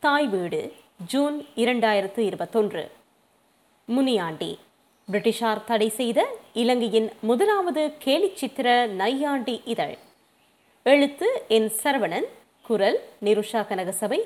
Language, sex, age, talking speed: Tamil, female, 20-39, 90 wpm